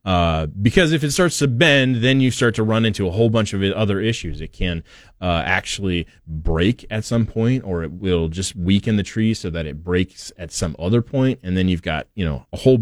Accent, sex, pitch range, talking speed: American, male, 90-130 Hz, 235 wpm